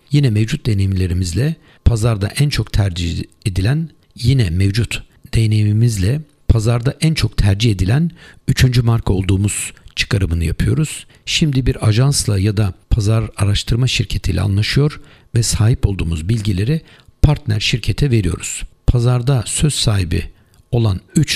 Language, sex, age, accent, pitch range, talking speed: Turkish, male, 60-79, native, 100-130 Hz, 120 wpm